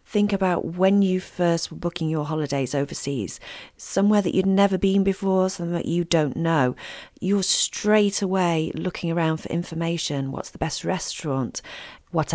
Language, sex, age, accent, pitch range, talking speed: English, female, 40-59, British, 155-195 Hz, 160 wpm